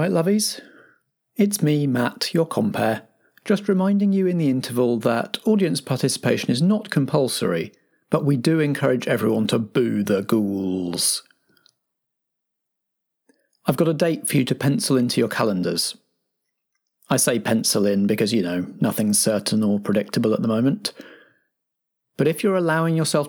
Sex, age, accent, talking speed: male, 40-59, British, 150 wpm